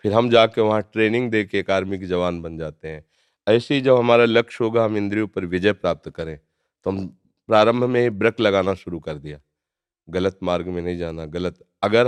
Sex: male